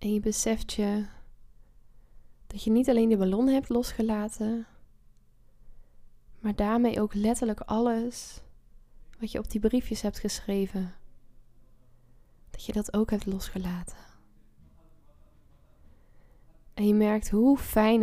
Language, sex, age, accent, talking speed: Dutch, female, 10-29, Dutch, 115 wpm